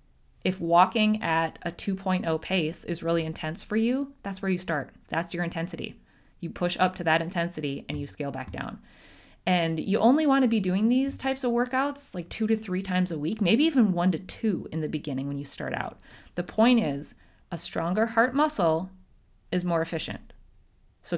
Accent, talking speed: American, 200 wpm